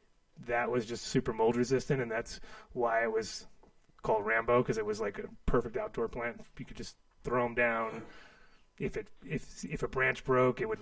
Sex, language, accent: male, English, American